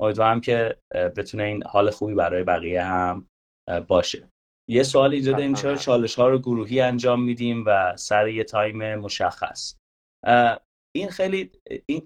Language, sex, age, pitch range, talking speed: Persian, male, 30-49, 100-125 Hz, 145 wpm